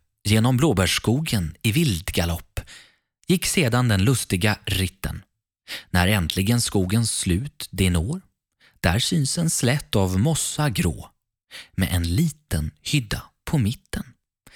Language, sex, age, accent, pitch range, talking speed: Swedish, male, 30-49, native, 90-125 Hz, 120 wpm